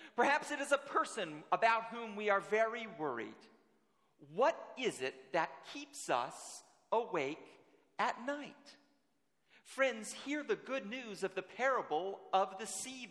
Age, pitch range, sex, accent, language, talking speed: 40-59, 190-265 Hz, male, American, English, 140 wpm